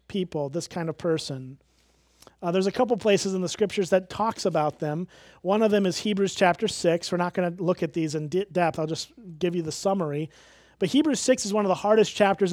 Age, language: 30-49, English